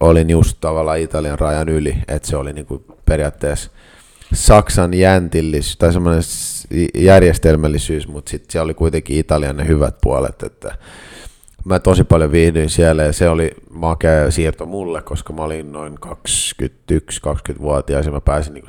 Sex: male